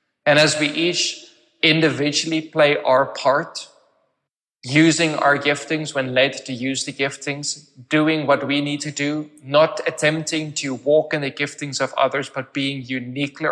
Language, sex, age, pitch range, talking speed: English, male, 20-39, 130-150 Hz, 155 wpm